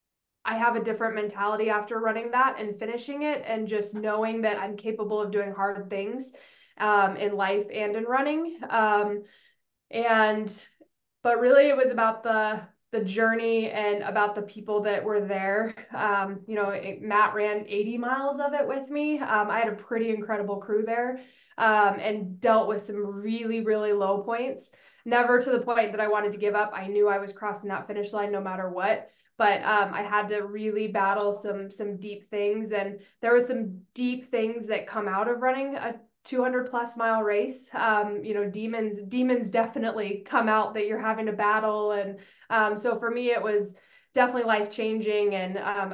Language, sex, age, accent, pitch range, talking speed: English, female, 20-39, American, 205-230 Hz, 190 wpm